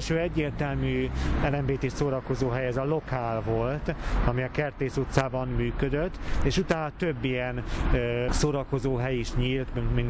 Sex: male